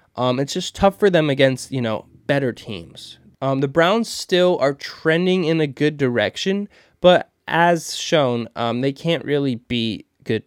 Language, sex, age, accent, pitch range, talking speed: English, male, 20-39, American, 120-170 Hz, 170 wpm